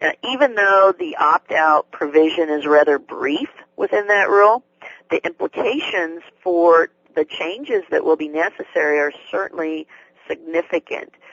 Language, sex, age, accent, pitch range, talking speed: English, female, 50-69, American, 155-245 Hz, 120 wpm